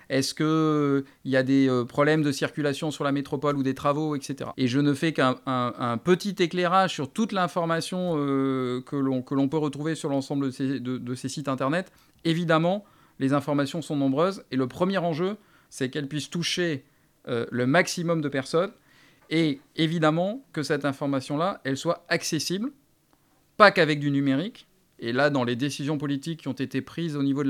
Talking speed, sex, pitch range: 175 wpm, male, 135-165 Hz